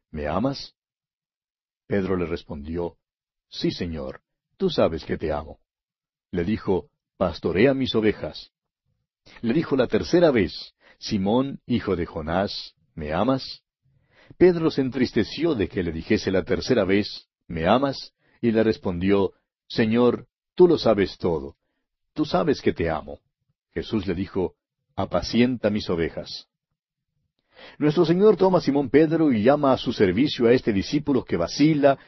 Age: 60-79